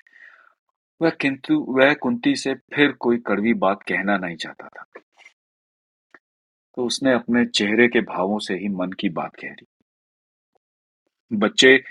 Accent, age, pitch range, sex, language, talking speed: native, 40-59, 100-130 Hz, male, Hindi, 135 wpm